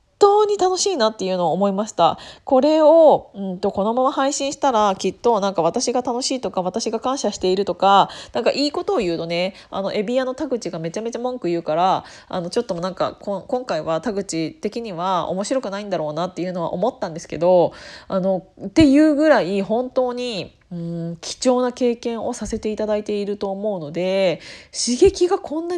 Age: 20-39